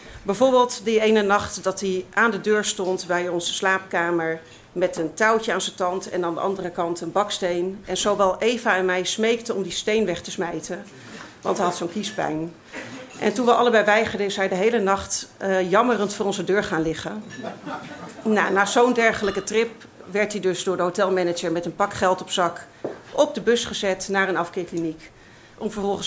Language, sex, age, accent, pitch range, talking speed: Dutch, female, 40-59, Dutch, 175-220 Hz, 195 wpm